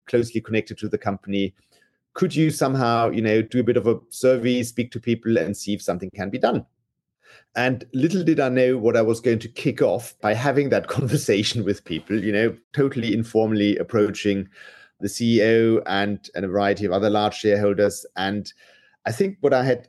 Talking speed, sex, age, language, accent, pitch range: 195 wpm, male, 30-49, English, German, 105-125 Hz